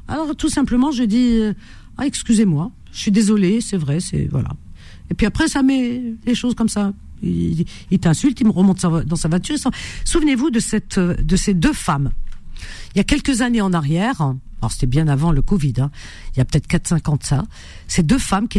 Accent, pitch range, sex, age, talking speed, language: French, 130-190 Hz, female, 50-69, 215 wpm, French